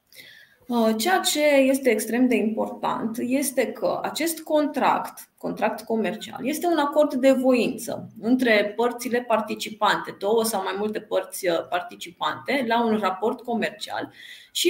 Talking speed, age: 125 wpm, 20-39